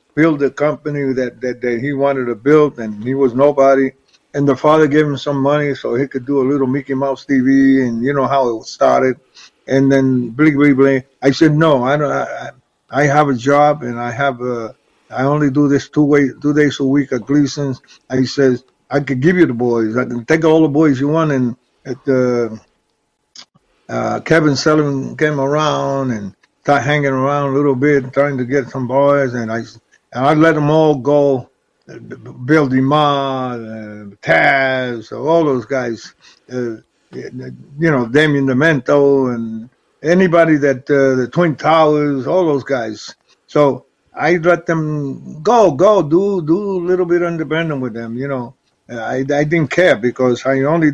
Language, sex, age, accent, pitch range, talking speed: English, male, 50-69, American, 130-150 Hz, 185 wpm